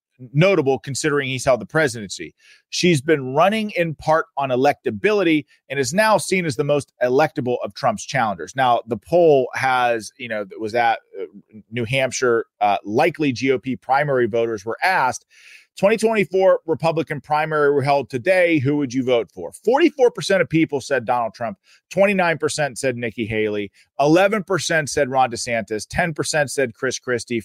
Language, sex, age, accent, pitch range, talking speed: English, male, 30-49, American, 125-170 Hz, 165 wpm